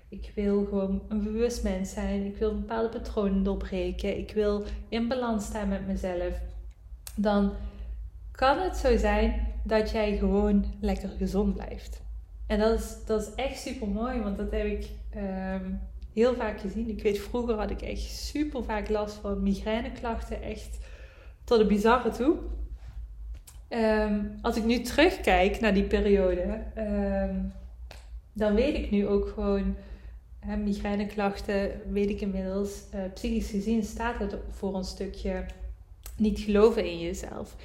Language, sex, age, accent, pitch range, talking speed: Dutch, female, 20-39, Dutch, 190-215 Hz, 150 wpm